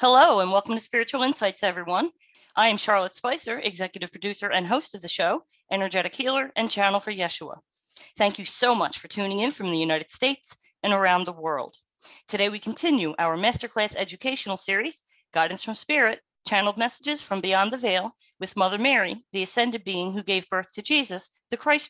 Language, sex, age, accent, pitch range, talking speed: English, female, 40-59, American, 180-230 Hz, 185 wpm